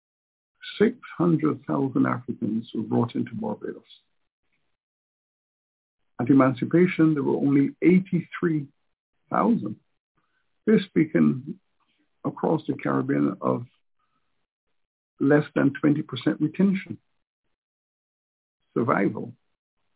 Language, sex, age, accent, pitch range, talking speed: English, male, 60-79, American, 120-160 Hz, 70 wpm